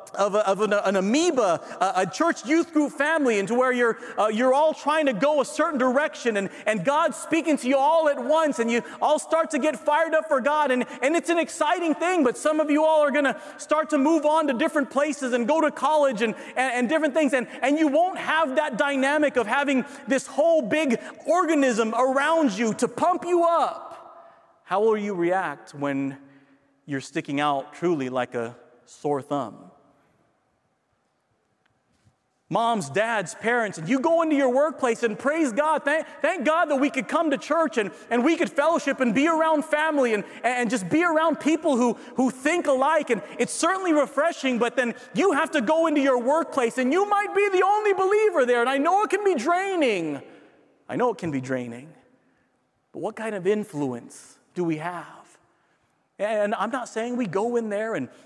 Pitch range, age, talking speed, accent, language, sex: 225-310 Hz, 40-59, 200 wpm, American, English, male